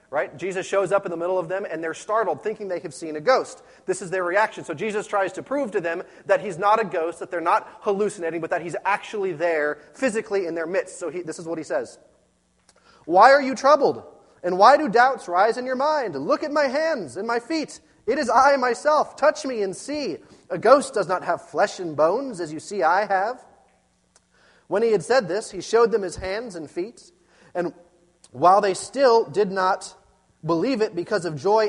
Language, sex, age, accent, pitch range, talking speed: English, male, 30-49, American, 180-245 Hz, 220 wpm